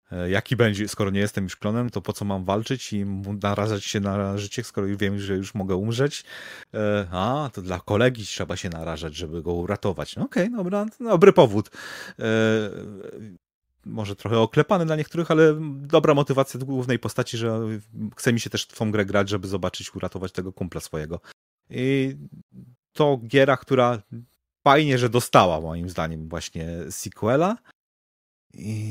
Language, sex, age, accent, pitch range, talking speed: Polish, male, 30-49, native, 95-125 Hz, 160 wpm